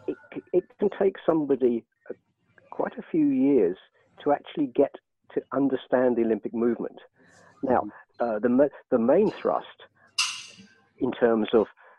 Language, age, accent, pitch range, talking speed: English, 50-69, British, 100-125 Hz, 130 wpm